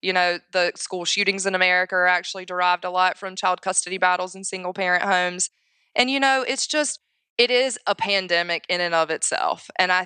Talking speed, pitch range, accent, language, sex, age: 210 wpm, 170-200 Hz, American, English, female, 20-39